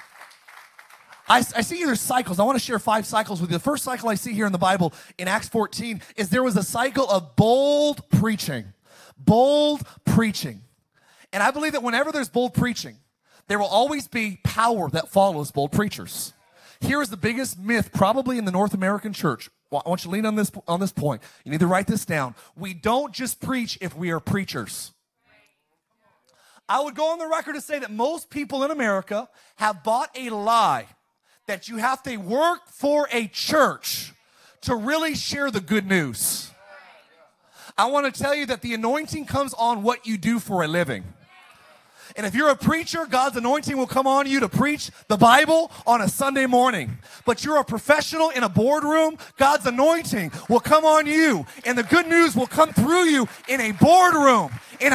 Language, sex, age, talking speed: English, male, 30-49, 195 wpm